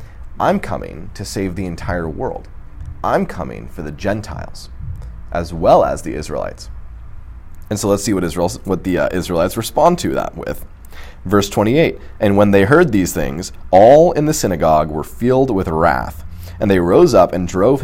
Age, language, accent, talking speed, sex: 30-49, English, American, 175 wpm, male